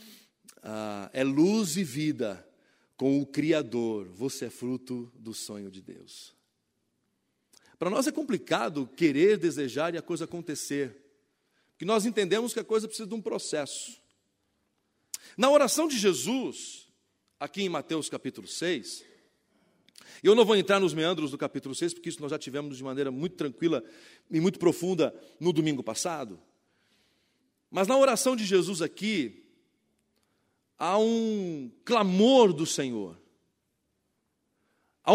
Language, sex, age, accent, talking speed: Portuguese, male, 40-59, Brazilian, 135 wpm